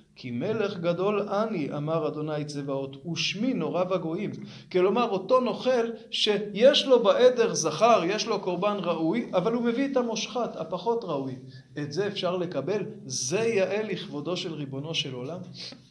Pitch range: 170-230 Hz